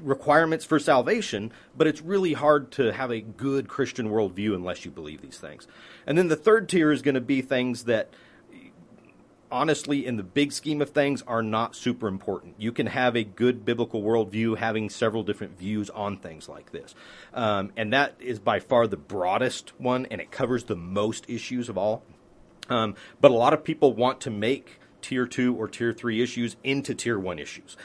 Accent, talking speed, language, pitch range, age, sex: American, 195 wpm, English, 115-150 Hz, 40-59, male